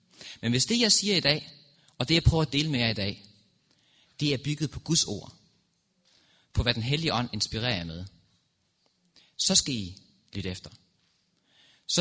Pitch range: 105-150 Hz